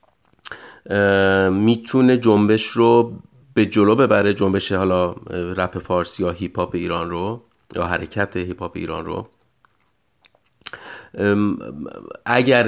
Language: English